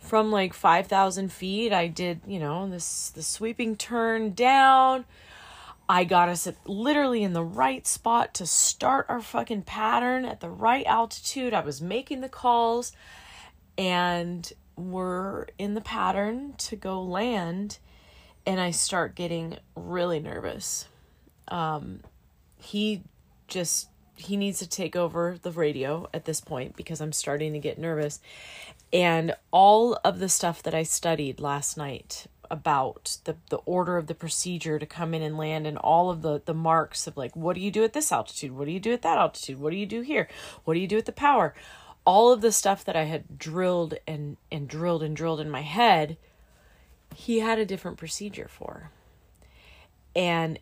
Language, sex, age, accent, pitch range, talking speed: English, female, 30-49, American, 155-205 Hz, 175 wpm